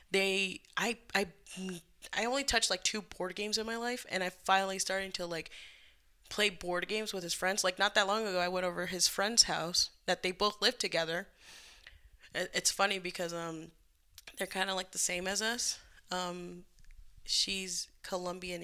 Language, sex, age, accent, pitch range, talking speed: English, female, 10-29, American, 180-210 Hz, 180 wpm